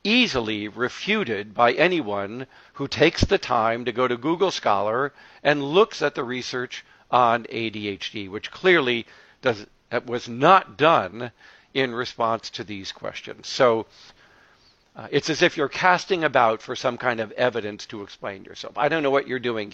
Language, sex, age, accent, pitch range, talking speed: English, male, 50-69, American, 115-150 Hz, 160 wpm